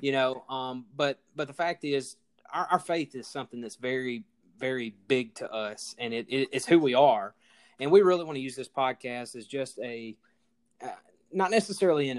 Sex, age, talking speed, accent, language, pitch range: male, 20-39, 190 wpm, American, English, 125-150 Hz